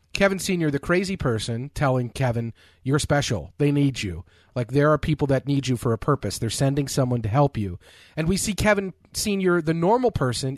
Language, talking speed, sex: English, 205 wpm, male